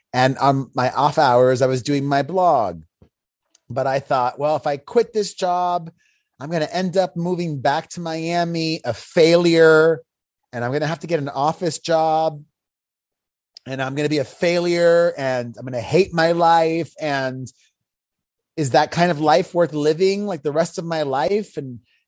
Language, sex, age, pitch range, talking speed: English, male, 30-49, 130-160 Hz, 190 wpm